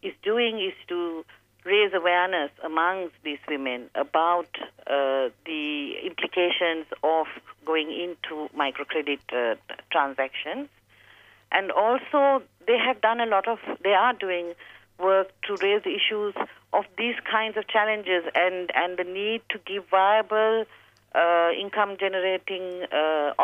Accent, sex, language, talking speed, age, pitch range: Indian, female, English, 130 wpm, 50-69, 155-215 Hz